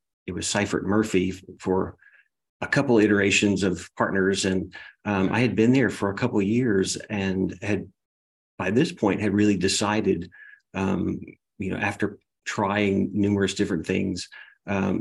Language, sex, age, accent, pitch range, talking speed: English, male, 40-59, American, 95-110 Hz, 150 wpm